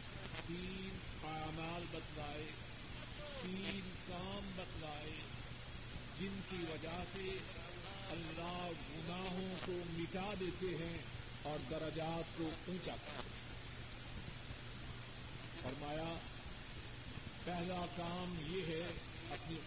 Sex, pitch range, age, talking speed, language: male, 120-180 Hz, 50-69, 80 wpm, Urdu